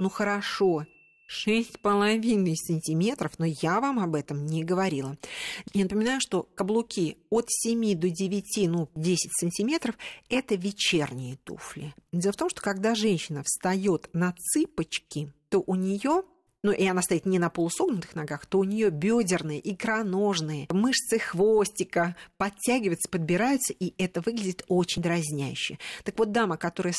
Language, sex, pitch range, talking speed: Russian, female, 170-235 Hz, 140 wpm